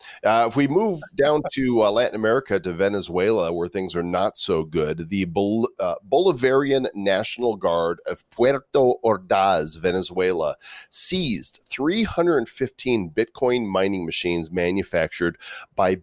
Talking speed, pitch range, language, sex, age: 125 wpm, 95-125 Hz, English, male, 40-59